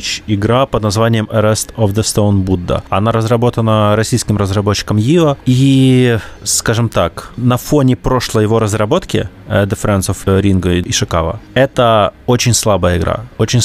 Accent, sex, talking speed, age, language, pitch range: native, male, 140 wpm, 20-39, Russian, 100-125 Hz